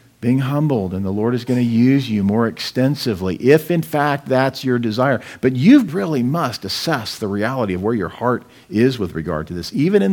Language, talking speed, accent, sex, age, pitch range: English, 215 wpm, American, male, 50-69, 115-165 Hz